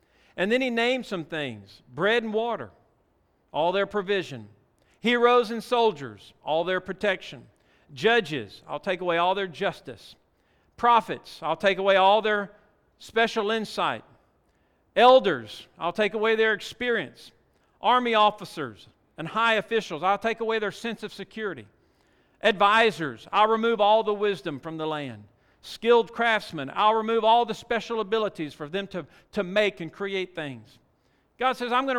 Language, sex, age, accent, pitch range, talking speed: English, male, 50-69, American, 150-220 Hz, 150 wpm